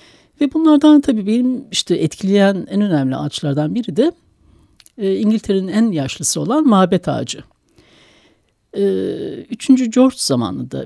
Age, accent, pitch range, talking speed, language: 60-79, native, 155-240 Hz, 110 wpm, Turkish